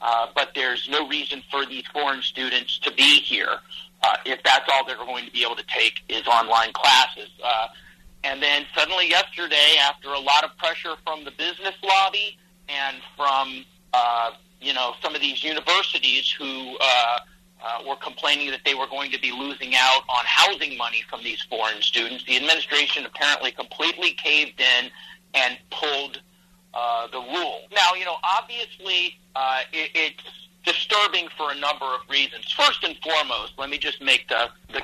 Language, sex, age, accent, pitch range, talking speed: English, male, 40-59, American, 130-170 Hz, 175 wpm